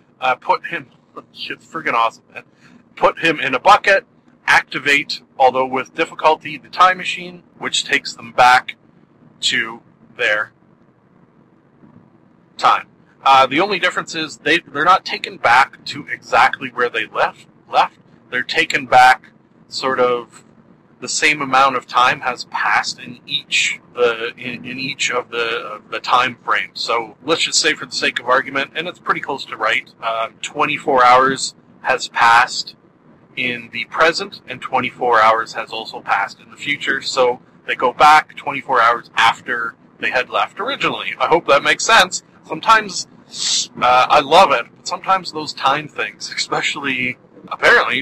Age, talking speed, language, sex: 40-59, 155 wpm, English, male